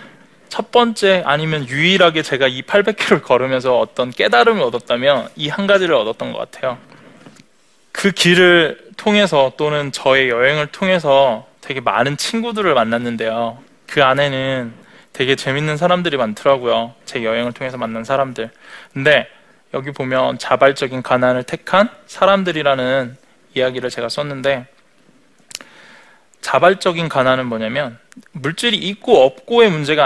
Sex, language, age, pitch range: male, Korean, 20-39, 130-190 Hz